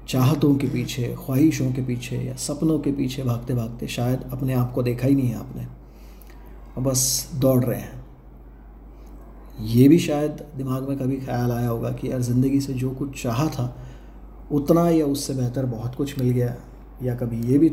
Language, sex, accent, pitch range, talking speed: Hindi, male, native, 120-140 Hz, 185 wpm